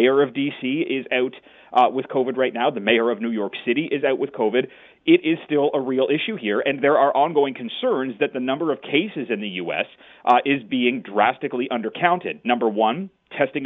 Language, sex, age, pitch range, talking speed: English, male, 30-49, 115-140 Hz, 210 wpm